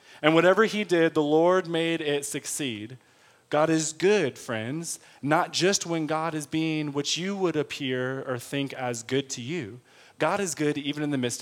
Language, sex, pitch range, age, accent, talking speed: English, male, 150-195 Hz, 30-49, American, 190 wpm